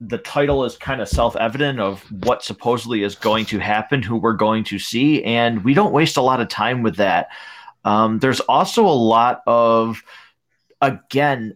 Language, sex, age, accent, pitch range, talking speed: English, male, 30-49, American, 100-130 Hz, 180 wpm